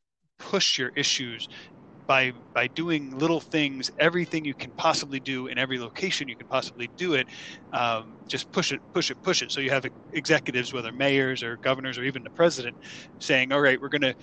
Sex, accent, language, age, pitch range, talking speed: male, American, English, 20-39, 125-155 Hz, 195 wpm